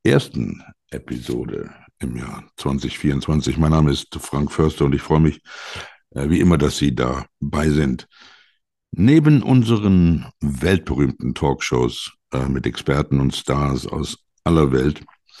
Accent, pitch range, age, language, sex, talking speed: German, 70-95 Hz, 60-79, German, male, 130 wpm